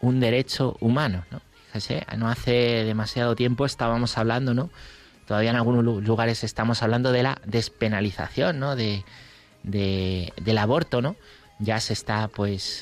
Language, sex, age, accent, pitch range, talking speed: Spanish, male, 30-49, Spanish, 105-125 Hz, 145 wpm